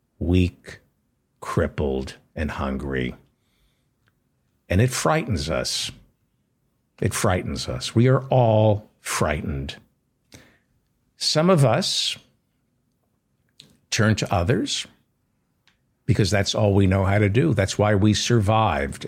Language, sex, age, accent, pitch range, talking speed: English, male, 60-79, American, 90-125 Hz, 105 wpm